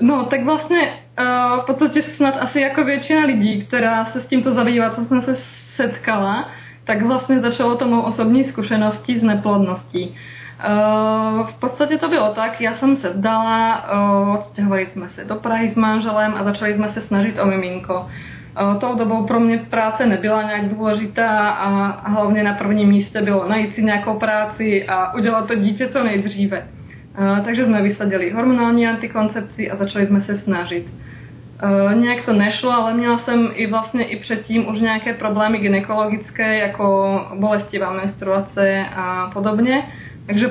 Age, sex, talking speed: 20-39, female, 160 wpm